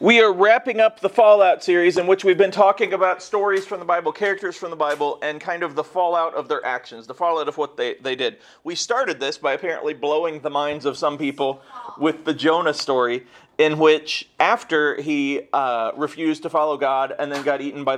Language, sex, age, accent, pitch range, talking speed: English, male, 40-59, American, 145-175 Hz, 215 wpm